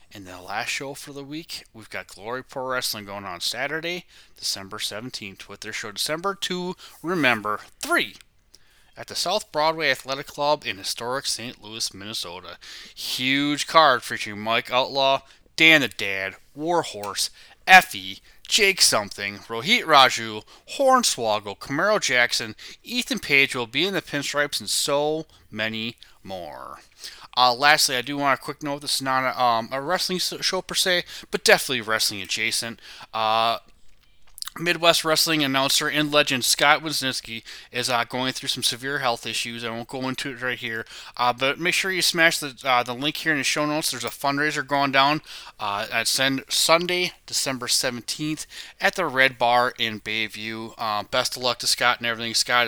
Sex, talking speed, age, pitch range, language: male, 170 wpm, 20-39, 115-150 Hz, English